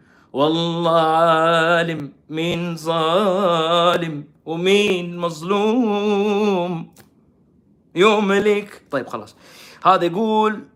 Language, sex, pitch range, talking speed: Arabic, male, 125-180 Hz, 65 wpm